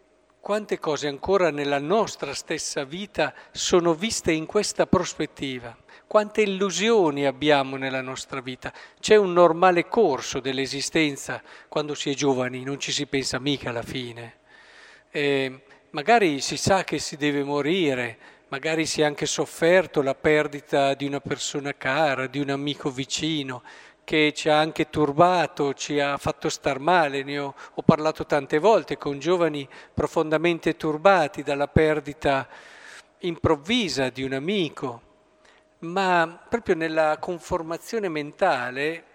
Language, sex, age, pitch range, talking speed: Italian, male, 50-69, 140-180 Hz, 135 wpm